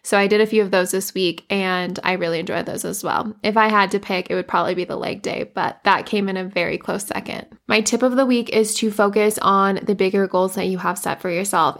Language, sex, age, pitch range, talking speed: English, female, 20-39, 185-205 Hz, 275 wpm